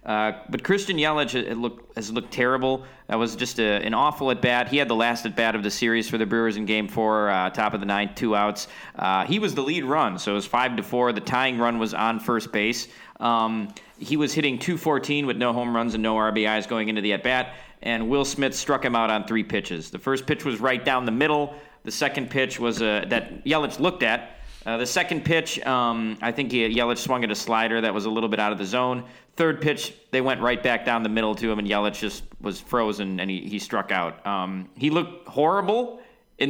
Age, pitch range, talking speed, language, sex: 40-59, 105-135 Hz, 235 wpm, English, male